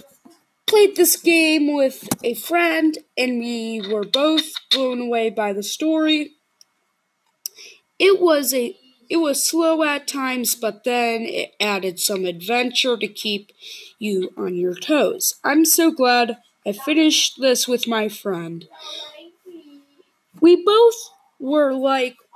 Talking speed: 130 wpm